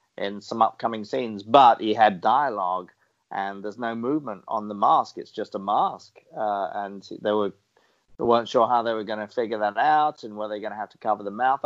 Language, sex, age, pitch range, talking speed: English, male, 40-59, 105-130 Hz, 225 wpm